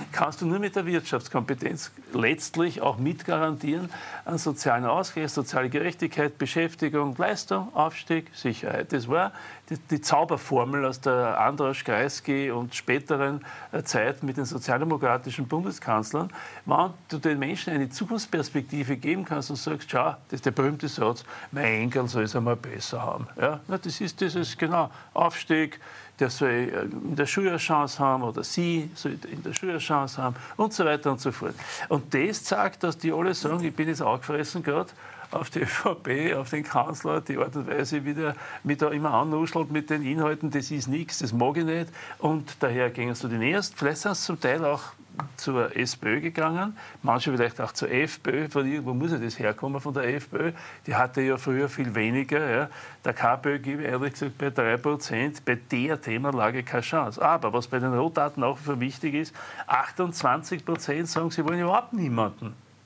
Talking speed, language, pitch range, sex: 180 wpm, German, 130-160 Hz, male